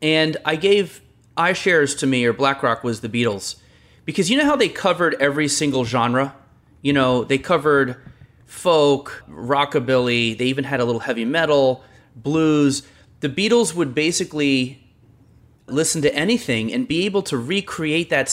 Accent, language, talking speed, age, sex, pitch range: American, English, 155 wpm, 30-49, male, 120-155 Hz